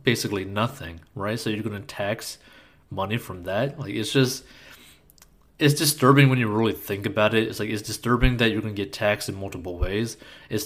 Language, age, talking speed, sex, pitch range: English, 20-39, 205 wpm, male, 100-125 Hz